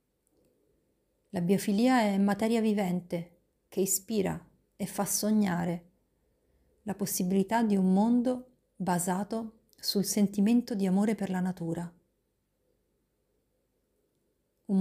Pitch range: 180-220 Hz